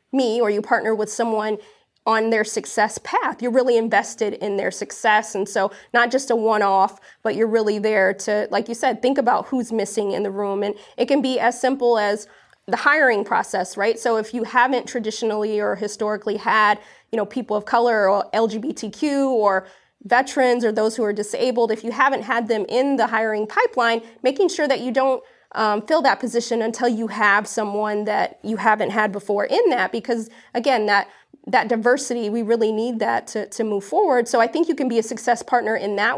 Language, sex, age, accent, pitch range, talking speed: English, female, 20-39, American, 210-245 Hz, 205 wpm